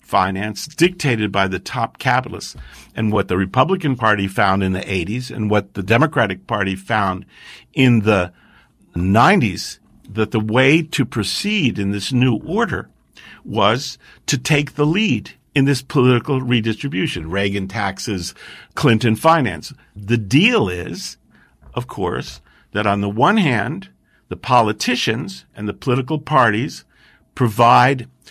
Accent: American